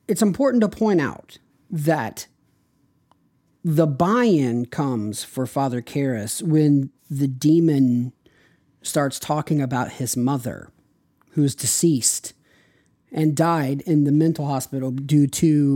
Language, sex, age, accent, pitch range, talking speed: English, male, 40-59, American, 130-160 Hz, 120 wpm